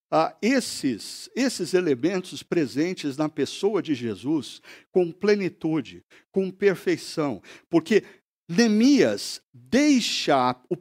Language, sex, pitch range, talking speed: Portuguese, male, 140-200 Hz, 95 wpm